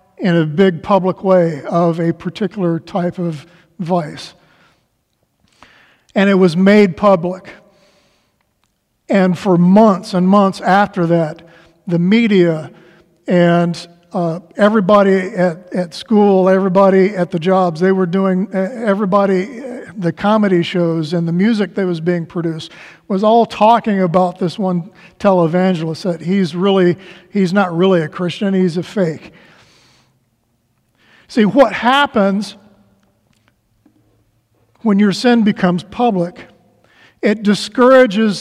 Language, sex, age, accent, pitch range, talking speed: English, male, 50-69, American, 175-205 Hz, 120 wpm